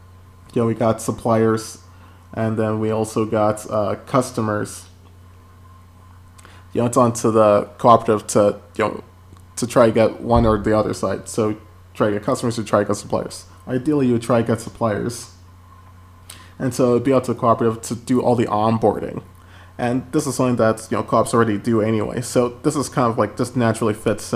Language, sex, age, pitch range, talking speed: English, male, 20-39, 95-115 Hz, 195 wpm